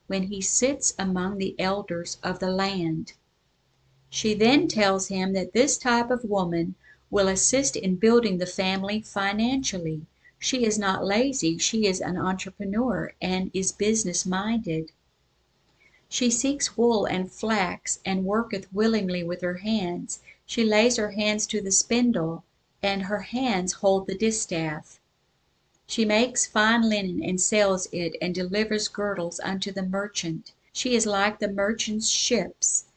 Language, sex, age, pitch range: English, female, 50-69, 185-225 Hz